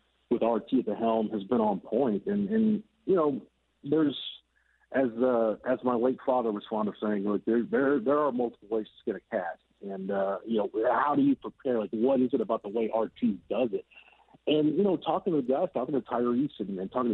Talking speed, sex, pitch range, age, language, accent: 225 wpm, male, 110-135 Hz, 50-69, English, American